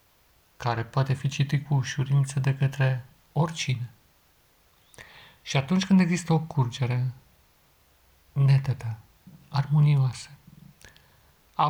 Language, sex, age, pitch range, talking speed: Romanian, male, 50-69, 120-145 Hz, 90 wpm